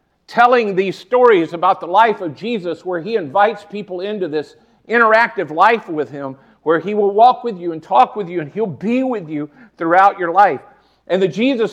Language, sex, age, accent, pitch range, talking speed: English, male, 50-69, American, 160-210 Hz, 200 wpm